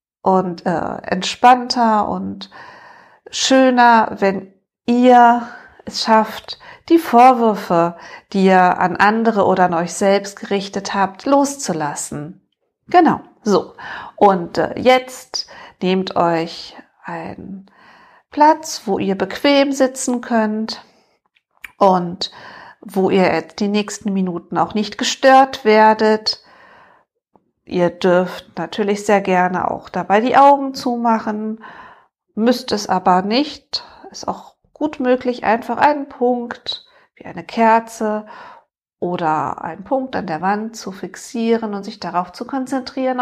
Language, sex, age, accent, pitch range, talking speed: German, female, 50-69, German, 190-255 Hz, 115 wpm